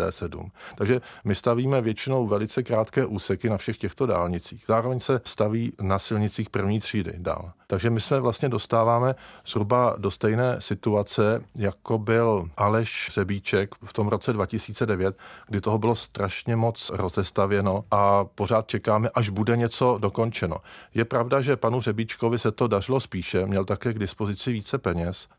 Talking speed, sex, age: 150 wpm, male, 50-69